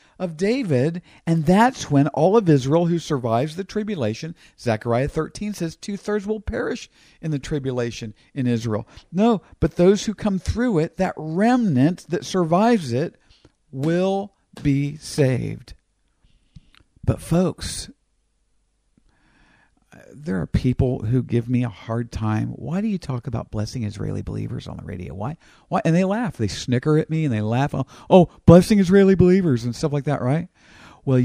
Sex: male